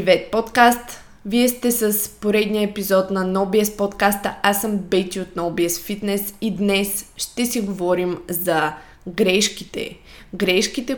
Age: 20-39